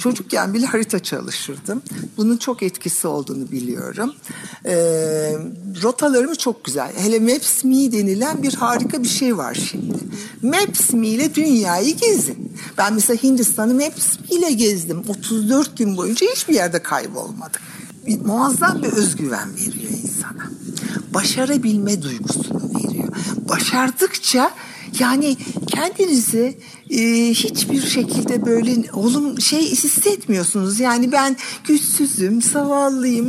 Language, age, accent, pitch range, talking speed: Turkish, 60-79, native, 210-275 Hz, 110 wpm